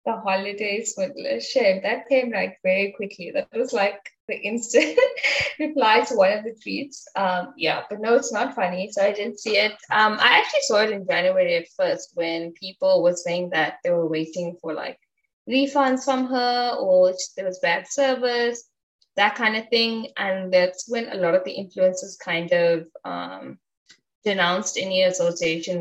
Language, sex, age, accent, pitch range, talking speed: English, female, 10-29, Indian, 180-250 Hz, 180 wpm